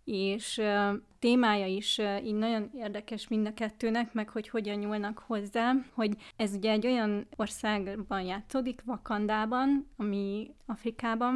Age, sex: 30-49, female